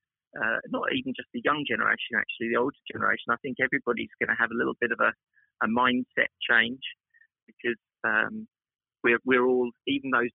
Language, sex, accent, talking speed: English, male, British, 185 wpm